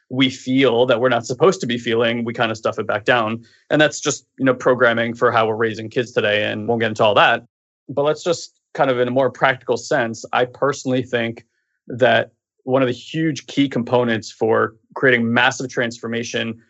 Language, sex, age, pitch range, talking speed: English, male, 20-39, 115-130 Hz, 210 wpm